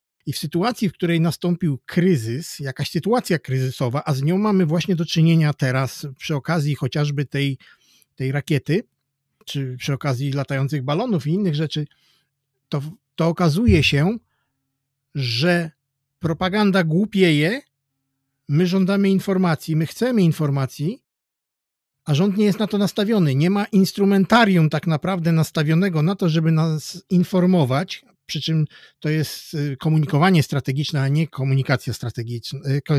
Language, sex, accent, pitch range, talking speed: Polish, male, native, 135-180 Hz, 135 wpm